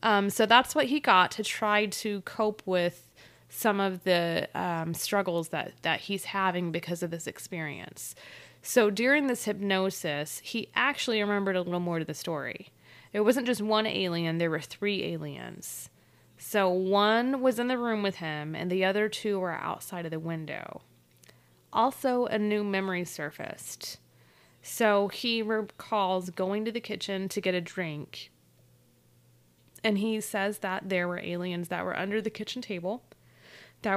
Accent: American